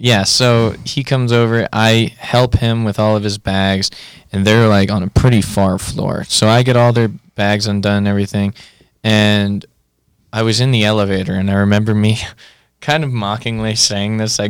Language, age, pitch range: English, 20-39, 100-120 Hz